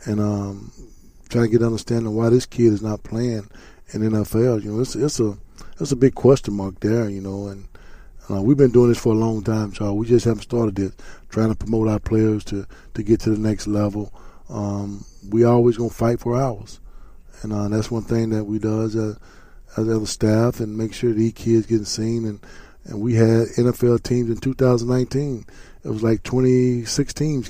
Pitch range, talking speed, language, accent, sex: 105-120 Hz, 205 wpm, English, American, male